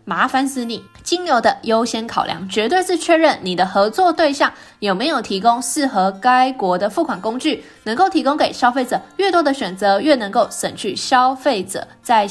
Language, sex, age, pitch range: Chinese, female, 20-39, 205-300 Hz